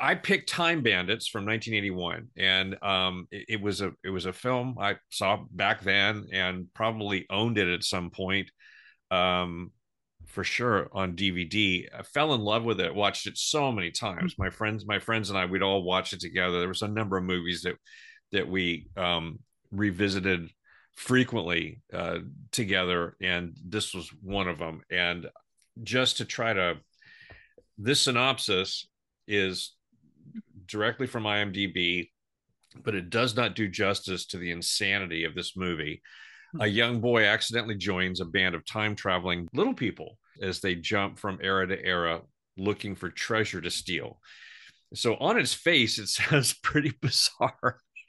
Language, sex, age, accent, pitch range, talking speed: English, male, 40-59, American, 90-110 Hz, 160 wpm